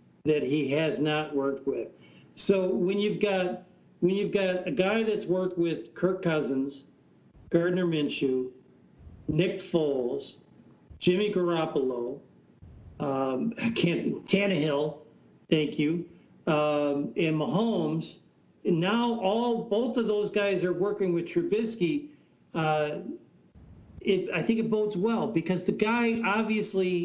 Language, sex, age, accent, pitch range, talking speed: English, male, 50-69, American, 155-200 Hz, 120 wpm